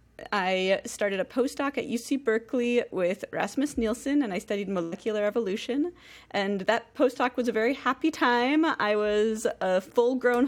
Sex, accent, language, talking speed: female, American, English, 155 wpm